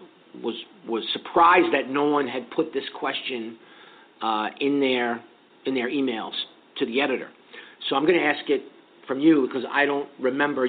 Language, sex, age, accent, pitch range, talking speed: English, male, 50-69, American, 120-145 Hz, 175 wpm